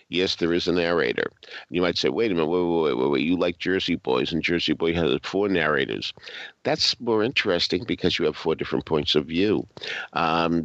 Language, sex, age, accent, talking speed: English, male, 50-69, American, 215 wpm